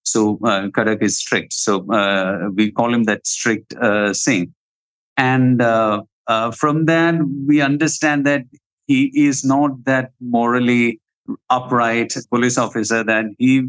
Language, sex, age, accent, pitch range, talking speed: English, male, 50-69, Indian, 115-145 Hz, 140 wpm